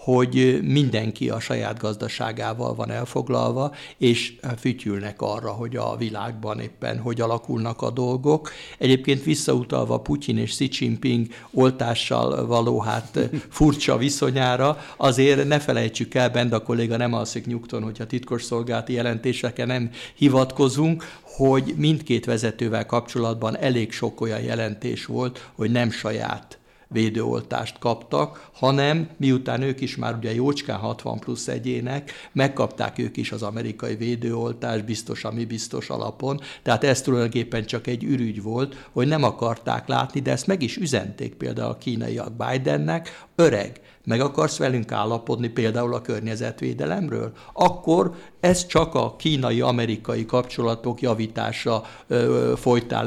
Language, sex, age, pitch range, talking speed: Hungarian, male, 60-79, 115-135 Hz, 130 wpm